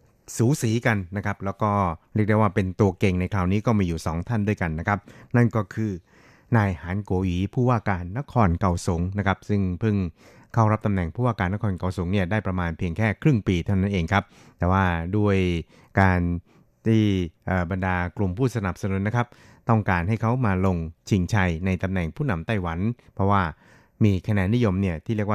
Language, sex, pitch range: Thai, male, 90-110 Hz